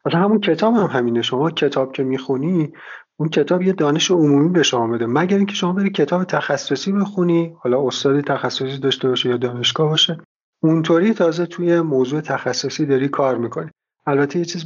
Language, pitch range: Arabic, 120-155 Hz